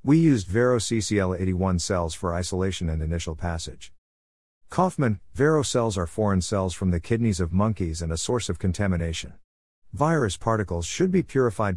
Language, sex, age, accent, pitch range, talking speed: English, male, 50-69, American, 90-120 Hz, 155 wpm